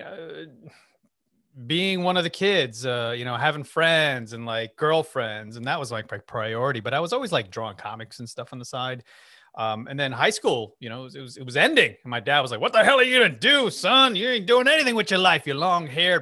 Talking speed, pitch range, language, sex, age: 250 wpm, 120-185 Hz, English, male, 30-49